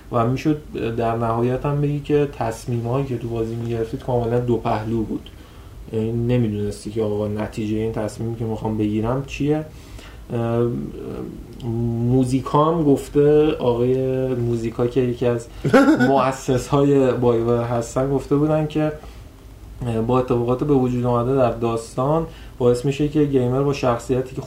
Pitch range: 115-135 Hz